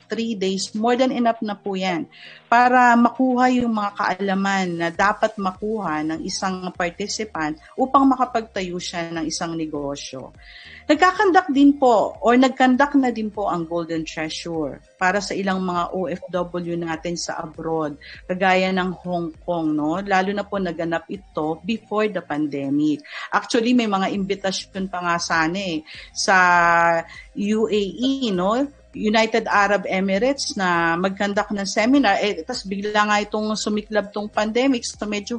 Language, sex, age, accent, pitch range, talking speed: Filipino, female, 40-59, native, 170-225 Hz, 145 wpm